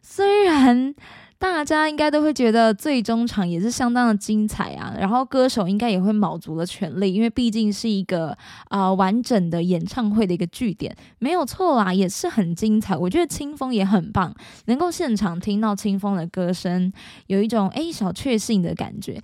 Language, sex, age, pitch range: Chinese, female, 20-39, 195-275 Hz